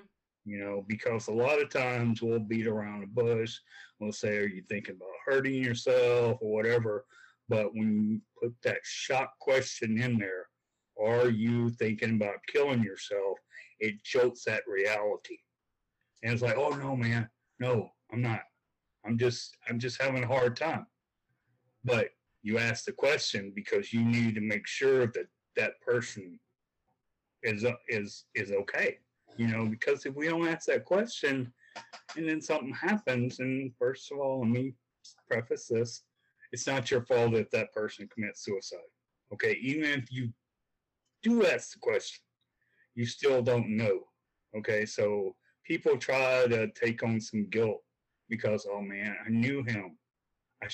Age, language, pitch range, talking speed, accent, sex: 40-59, English, 115-155 Hz, 160 wpm, American, male